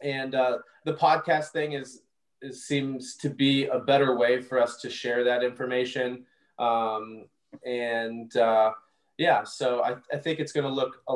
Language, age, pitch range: English, 20-39, 120-135 Hz